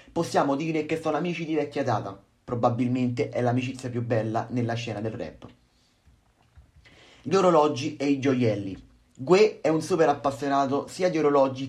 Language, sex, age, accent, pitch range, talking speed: Italian, male, 30-49, native, 125-150 Hz, 155 wpm